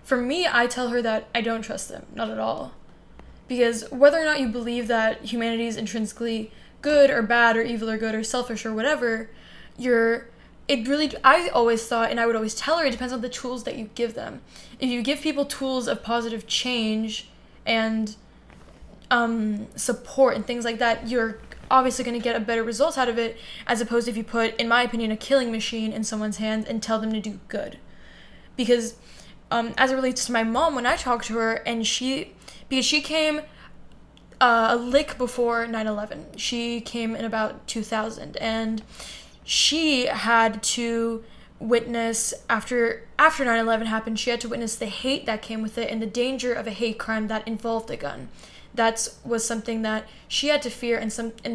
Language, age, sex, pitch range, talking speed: English, 10-29, female, 220-245 Hz, 200 wpm